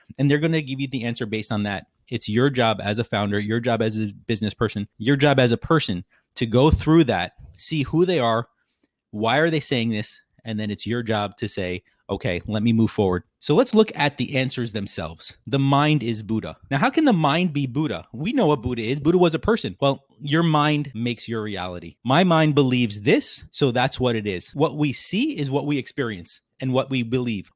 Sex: male